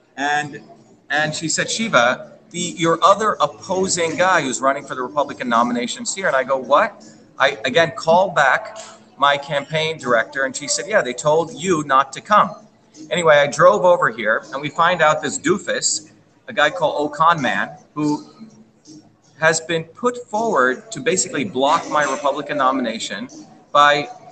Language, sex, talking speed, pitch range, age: English, male, 165 wpm, 150-220 Hz, 40-59